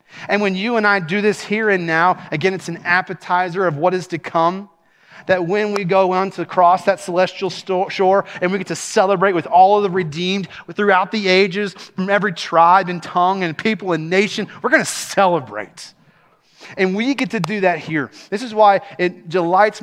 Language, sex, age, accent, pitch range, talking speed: English, male, 30-49, American, 170-215 Hz, 200 wpm